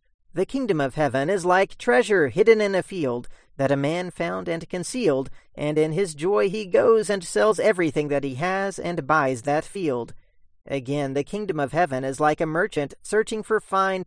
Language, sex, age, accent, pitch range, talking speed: English, male, 40-59, American, 140-190 Hz, 190 wpm